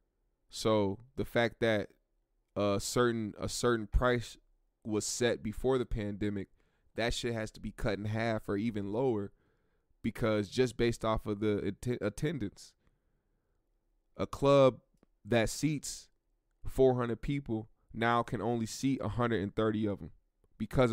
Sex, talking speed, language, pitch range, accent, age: male, 130 wpm, English, 100-120 Hz, American, 20-39